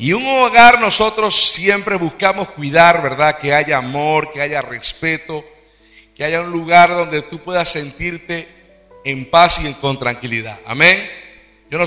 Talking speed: 150 wpm